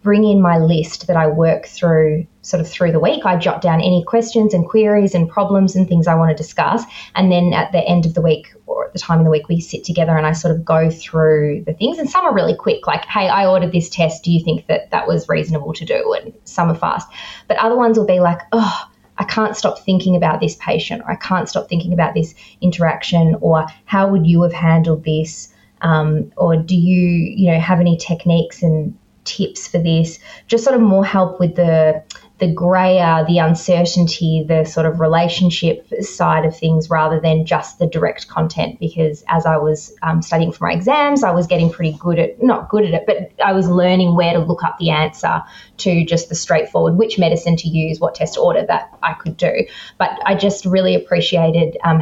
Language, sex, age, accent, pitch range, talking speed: English, female, 20-39, Australian, 160-185 Hz, 225 wpm